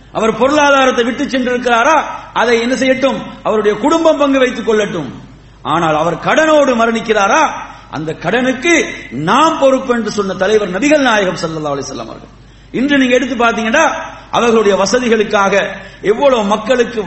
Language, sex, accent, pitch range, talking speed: English, male, Indian, 200-260 Hz, 130 wpm